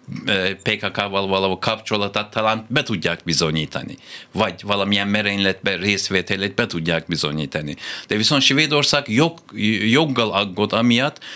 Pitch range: 100-120 Hz